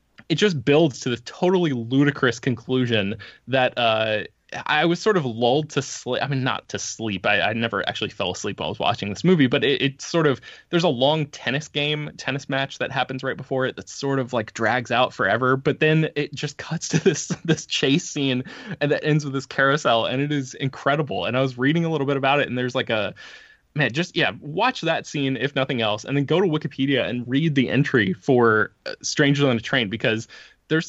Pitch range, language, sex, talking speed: 120-150 Hz, English, male, 225 wpm